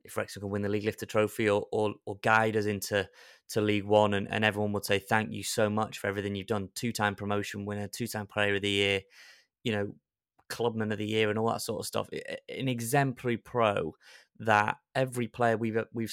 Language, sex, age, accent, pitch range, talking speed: English, male, 20-39, British, 100-115 Hz, 215 wpm